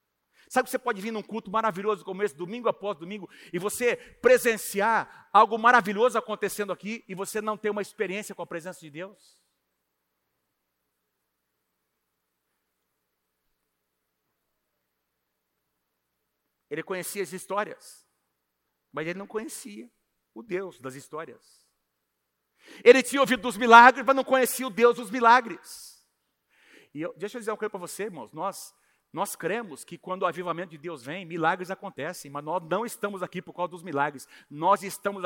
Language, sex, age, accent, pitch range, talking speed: Portuguese, male, 60-79, Brazilian, 170-240 Hz, 145 wpm